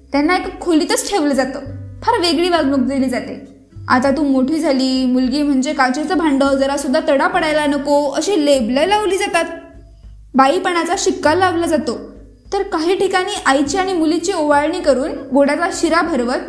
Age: 20-39